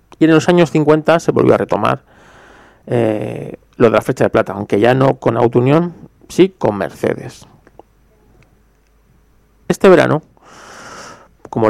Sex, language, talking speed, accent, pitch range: male, Spanish, 145 wpm, Spanish, 115-180 Hz